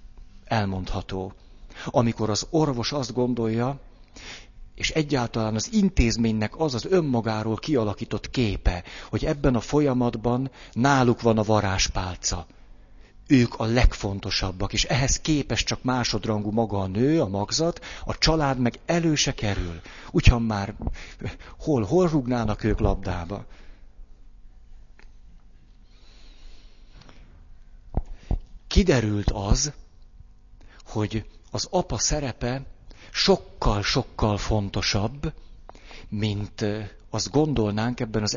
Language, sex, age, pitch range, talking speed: Hungarian, male, 60-79, 100-125 Hz, 95 wpm